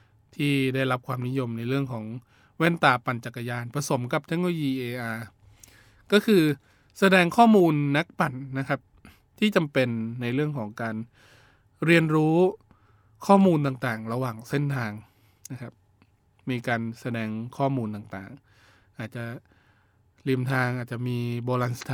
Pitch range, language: 110-135 Hz, Thai